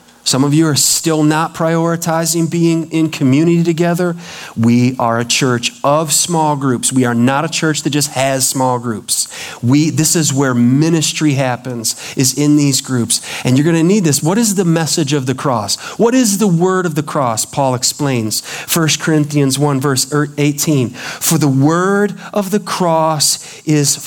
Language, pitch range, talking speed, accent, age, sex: English, 140-210 Hz, 175 wpm, American, 40-59, male